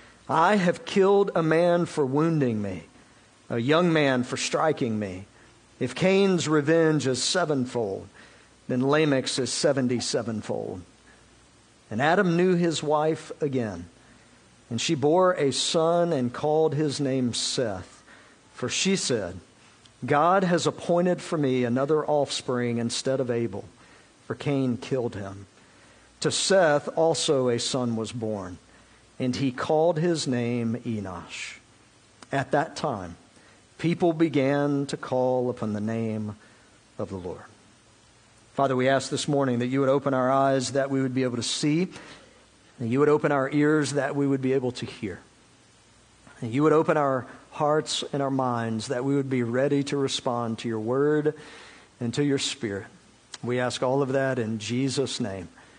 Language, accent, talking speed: English, American, 155 wpm